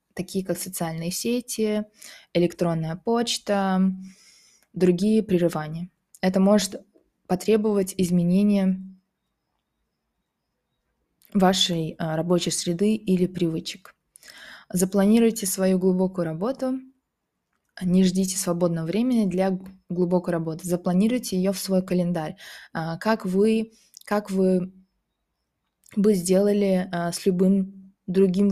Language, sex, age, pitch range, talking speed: English, female, 20-39, 180-210 Hz, 85 wpm